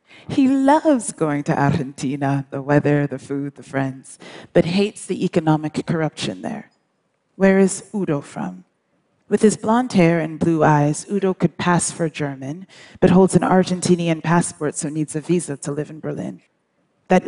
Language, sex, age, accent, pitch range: Chinese, female, 30-49, American, 150-185 Hz